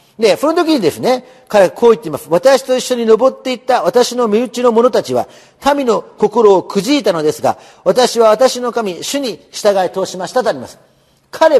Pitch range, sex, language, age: 185-260 Hz, male, Japanese, 40-59